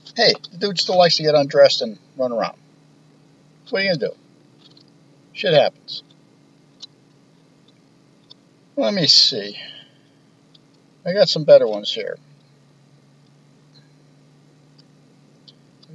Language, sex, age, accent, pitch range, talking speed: English, male, 50-69, American, 125-160 Hz, 105 wpm